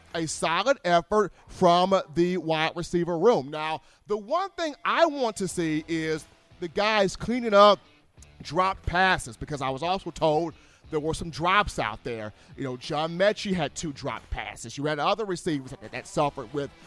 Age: 30-49